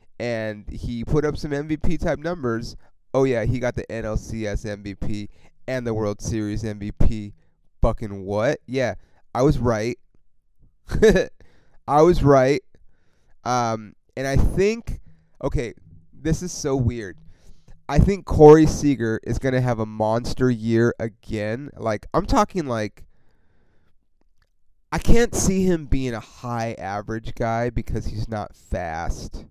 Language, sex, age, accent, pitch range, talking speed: English, male, 30-49, American, 110-150 Hz, 130 wpm